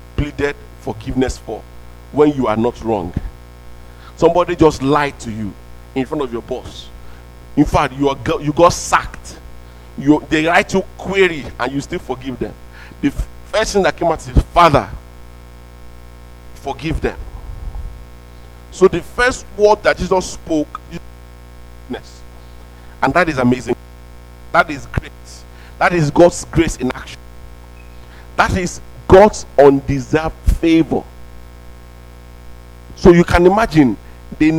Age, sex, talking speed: 50-69, male, 135 wpm